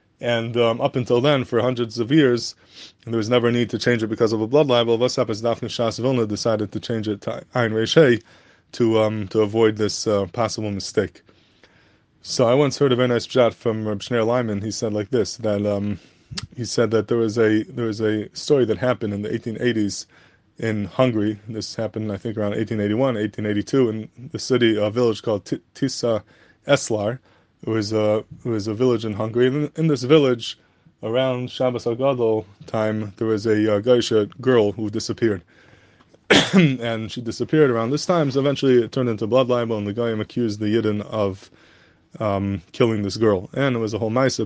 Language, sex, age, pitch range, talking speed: English, male, 20-39, 105-125 Hz, 195 wpm